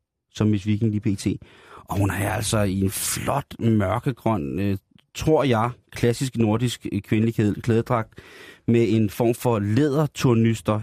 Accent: native